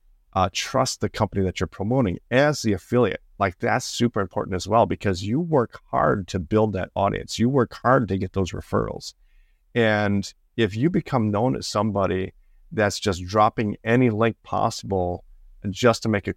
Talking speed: 175 wpm